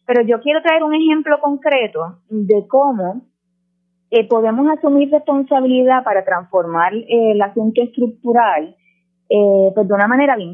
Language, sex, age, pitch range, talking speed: Spanish, female, 20-39, 195-270 Hz, 140 wpm